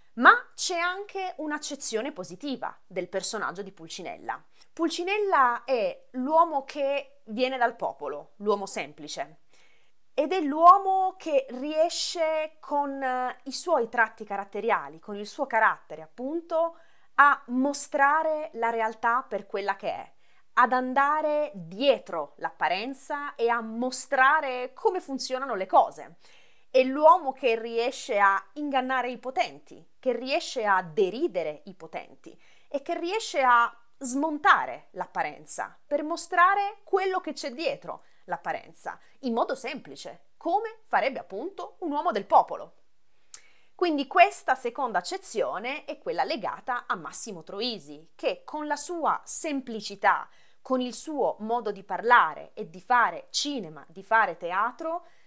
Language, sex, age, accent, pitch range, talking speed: Italian, female, 30-49, native, 230-320 Hz, 125 wpm